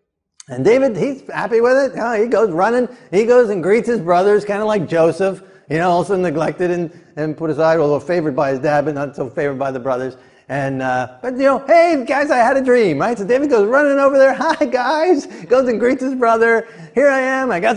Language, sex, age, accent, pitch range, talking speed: English, male, 50-69, American, 155-240 Hz, 235 wpm